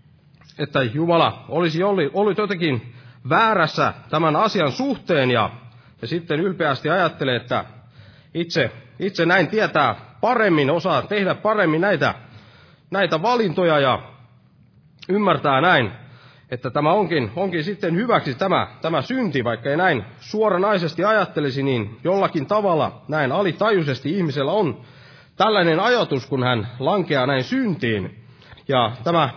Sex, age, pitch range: male, 30-49, 130-185 Hz